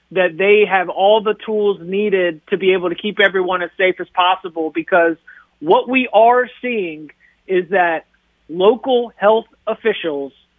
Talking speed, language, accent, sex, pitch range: 155 wpm, English, American, male, 185-215 Hz